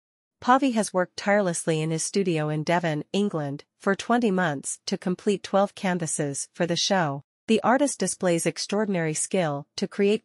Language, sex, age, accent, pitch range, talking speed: English, female, 40-59, American, 160-200 Hz, 160 wpm